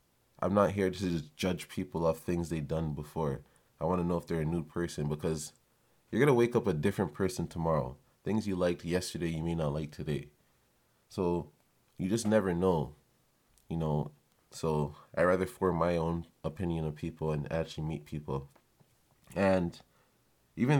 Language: English